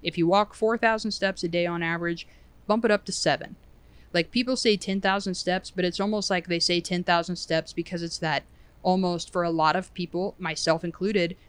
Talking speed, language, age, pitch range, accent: 200 wpm, English, 20-39, 165-195 Hz, American